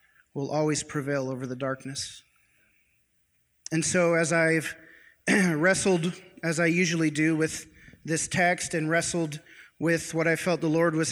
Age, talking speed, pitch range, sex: 30-49, 145 wpm, 150-180 Hz, male